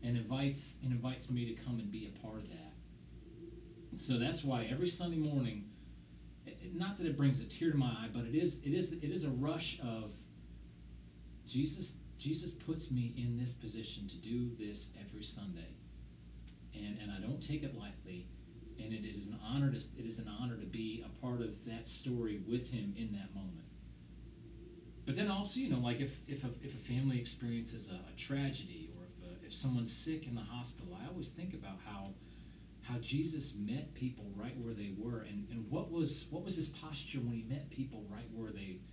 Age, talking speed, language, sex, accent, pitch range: 40-59, 200 wpm, English, male, American, 105-140 Hz